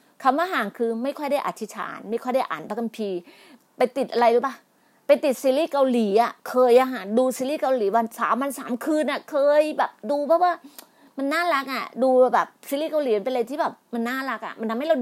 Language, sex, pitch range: Thai, female, 235-300 Hz